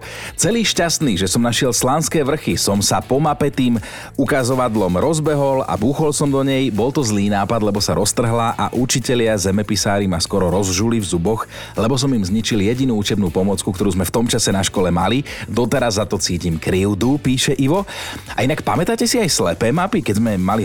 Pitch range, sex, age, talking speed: 100-130 Hz, male, 40-59, 190 wpm